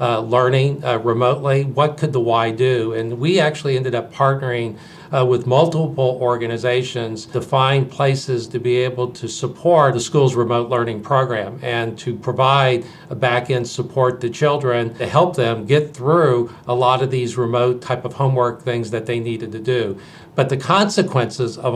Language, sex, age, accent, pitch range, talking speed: English, male, 50-69, American, 120-135 Hz, 175 wpm